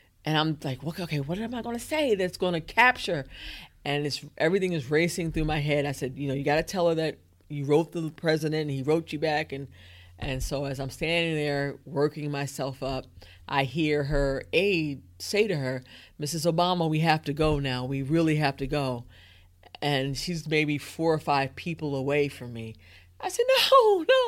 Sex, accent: female, American